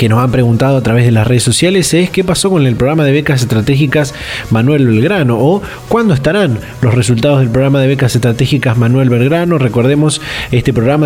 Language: Spanish